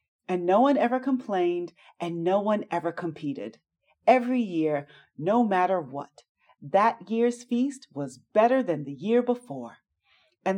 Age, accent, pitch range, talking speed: 40-59, American, 160-245 Hz, 140 wpm